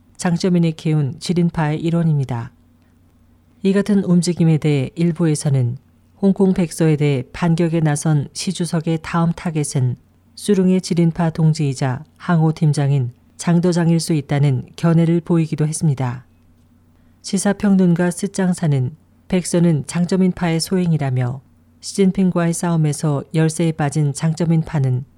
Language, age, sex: Korean, 40-59, female